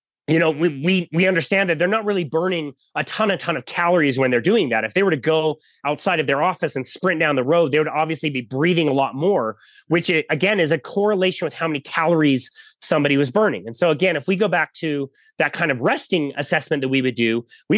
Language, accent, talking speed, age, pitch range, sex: English, American, 250 wpm, 30-49, 145-185 Hz, male